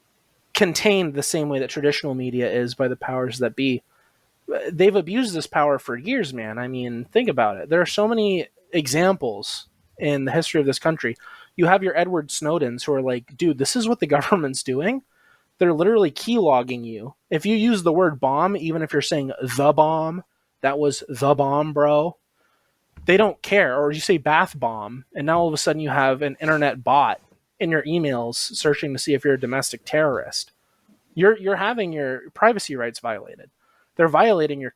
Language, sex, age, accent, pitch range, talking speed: English, male, 20-39, American, 135-185 Hz, 195 wpm